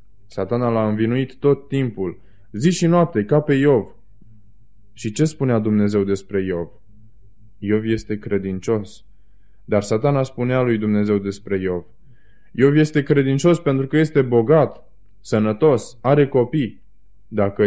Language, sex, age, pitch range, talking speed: Romanian, male, 20-39, 95-115 Hz, 130 wpm